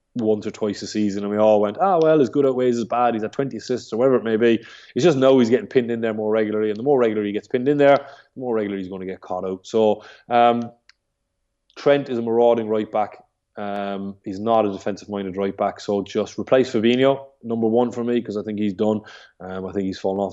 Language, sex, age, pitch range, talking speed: English, male, 20-39, 100-115 Hz, 265 wpm